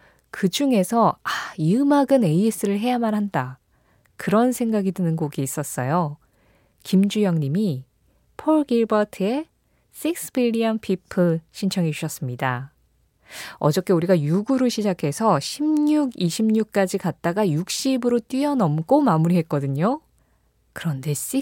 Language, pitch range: Korean, 160-240 Hz